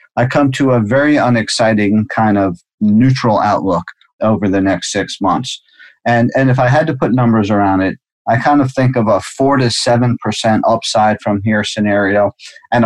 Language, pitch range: English, 105-125 Hz